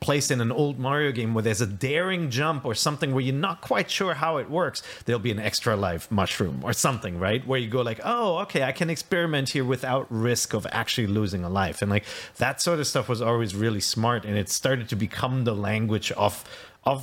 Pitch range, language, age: 110-150 Hz, English, 30-49